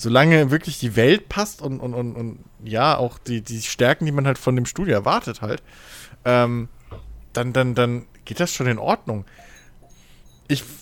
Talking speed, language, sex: 175 wpm, German, male